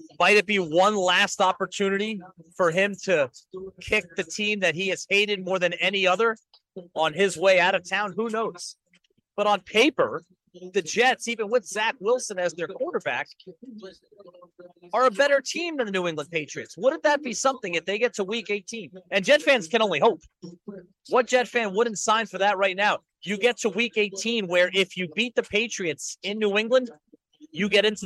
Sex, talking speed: male, 195 wpm